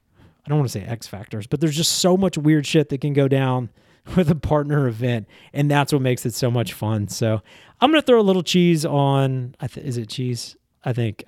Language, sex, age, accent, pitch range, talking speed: English, male, 30-49, American, 115-150 Hz, 235 wpm